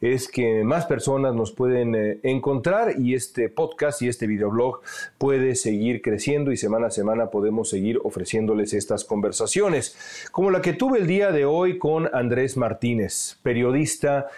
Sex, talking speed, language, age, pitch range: male, 155 wpm, Spanish, 40-59, 115-145 Hz